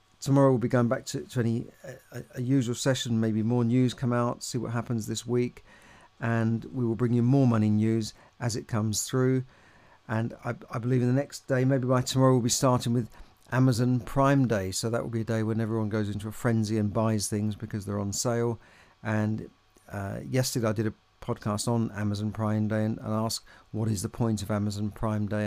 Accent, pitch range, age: British, 110-120 Hz, 50-69